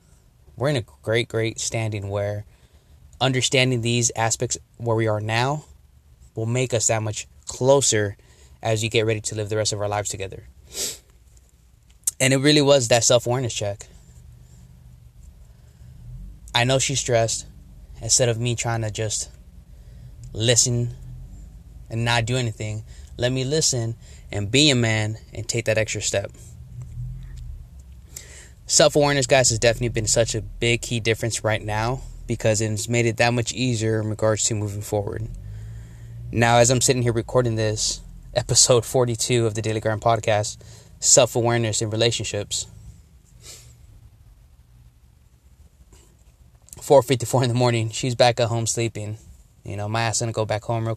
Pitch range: 90-120 Hz